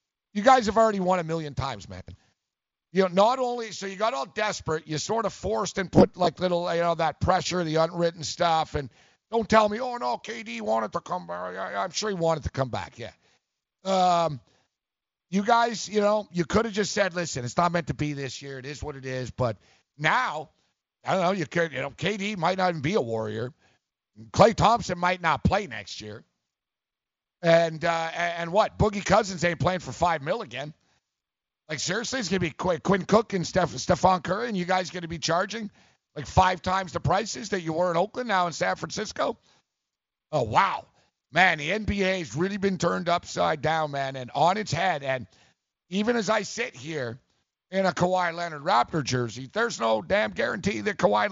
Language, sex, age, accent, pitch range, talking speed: English, male, 50-69, American, 150-195 Hz, 205 wpm